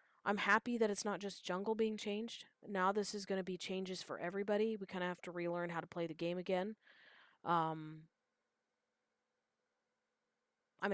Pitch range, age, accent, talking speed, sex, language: 175-220 Hz, 30-49, American, 175 wpm, female, English